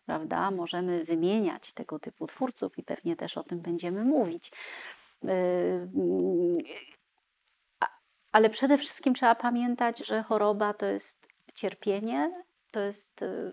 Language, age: Polish, 30-49